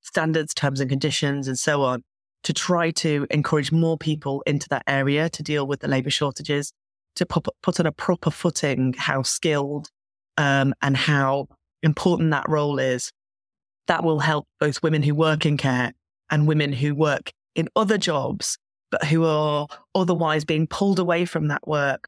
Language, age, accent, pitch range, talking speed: English, 20-39, British, 145-170 Hz, 170 wpm